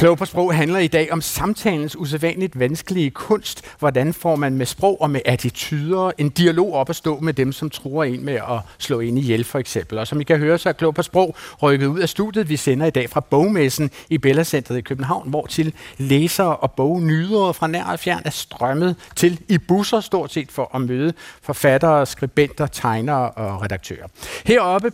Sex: male